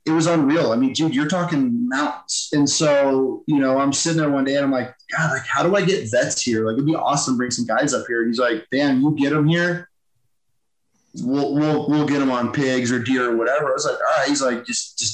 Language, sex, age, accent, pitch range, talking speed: English, male, 20-39, American, 130-155 Hz, 260 wpm